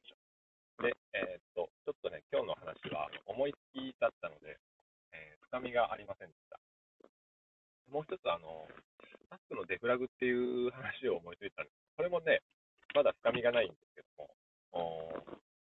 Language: Japanese